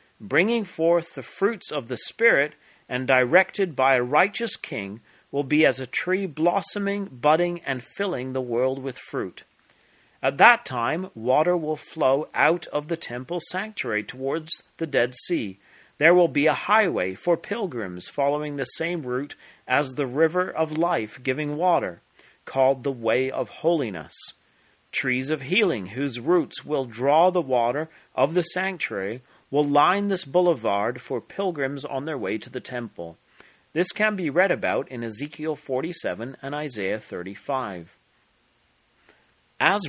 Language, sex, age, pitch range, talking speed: English, male, 40-59, 125-175 Hz, 150 wpm